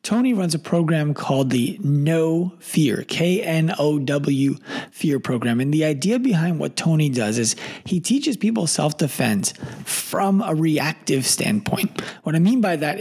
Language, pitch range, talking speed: English, 135-185 Hz, 150 wpm